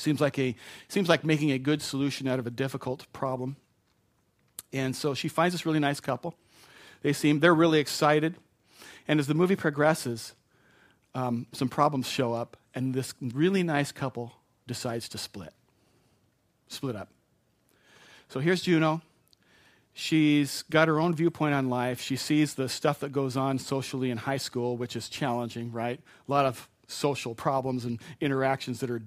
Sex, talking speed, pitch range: male, 165 wpm, 125-150 Hz